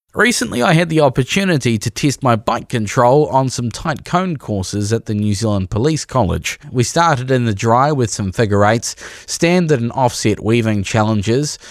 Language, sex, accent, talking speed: English, male, Australian, 180 wpm